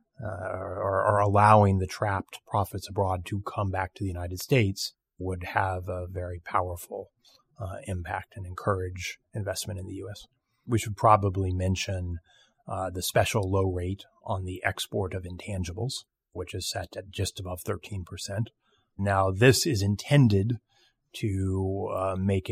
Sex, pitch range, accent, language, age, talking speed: male, 90-105 Hz, American, English, 30-49, 150 wpm